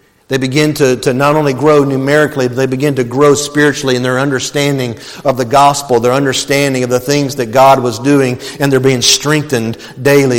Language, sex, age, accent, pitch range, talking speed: English, male, 50-69, American, 135-205 Hz, 195 wpm